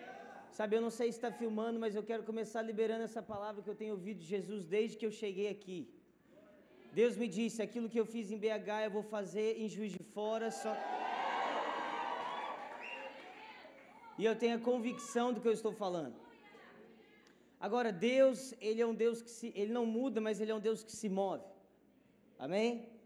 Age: 20-39